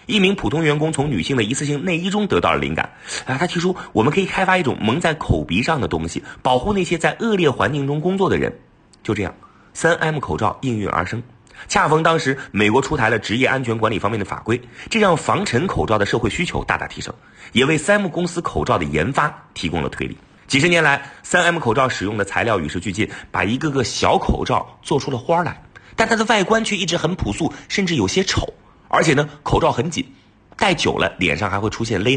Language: Chinese